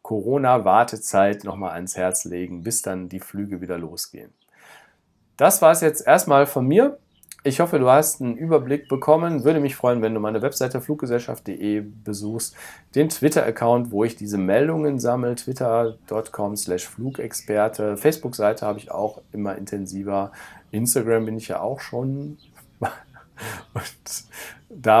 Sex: male